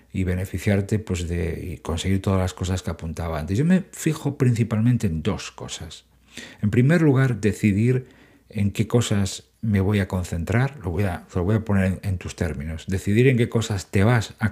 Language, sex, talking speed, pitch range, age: Spanish, male, 195 wpm, 95-115 Hz, 50-69